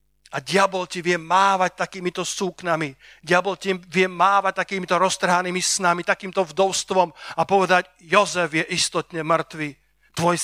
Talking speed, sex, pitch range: 130 wpm, male, 175-210 Hz